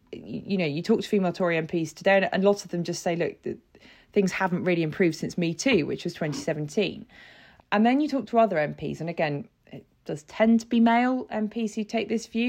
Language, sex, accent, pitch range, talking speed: English, female, British, 160-205 Hz, 230 wpm